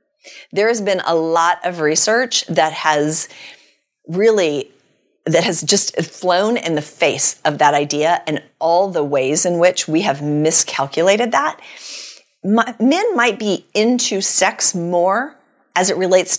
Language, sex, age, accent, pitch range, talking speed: English, female, 40-59, American, 170-235 Hz, 145 wpm